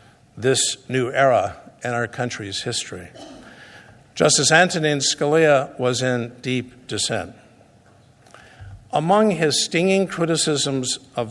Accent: American